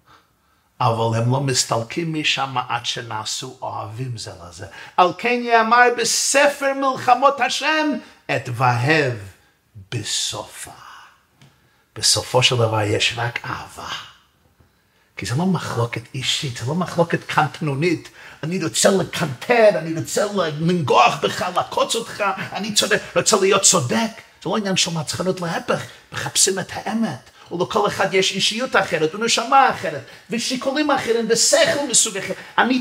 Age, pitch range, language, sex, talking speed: 50-69, 150-230 Hz, Hebrew, male, 125 wpm